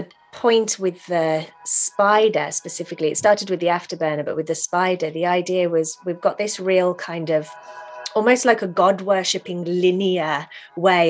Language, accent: English, British